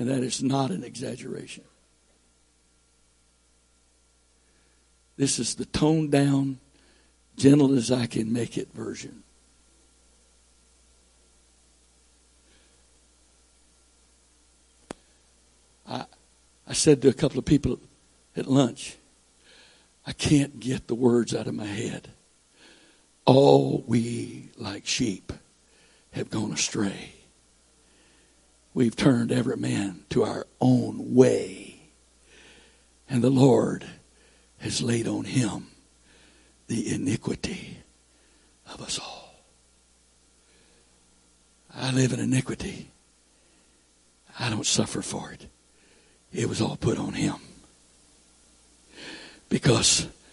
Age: 60-79